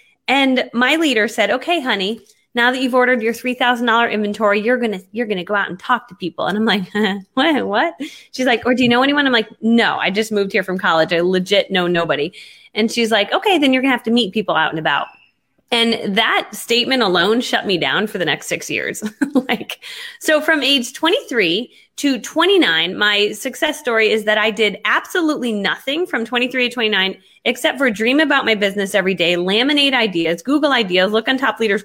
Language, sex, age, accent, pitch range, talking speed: English, female, 20-39, American, 200-260 Hz, 215 wpm